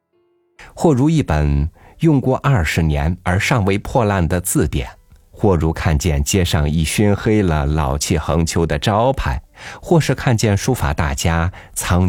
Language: Chinese